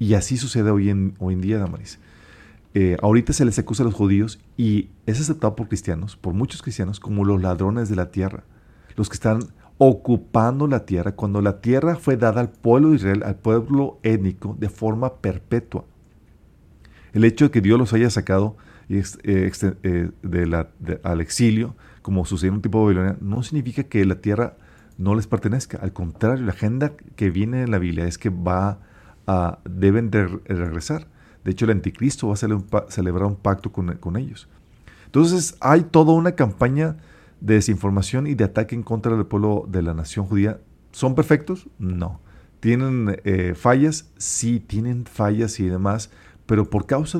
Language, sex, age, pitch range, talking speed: Spanish, male, 40-59, 95-120 Hz, 180 wpm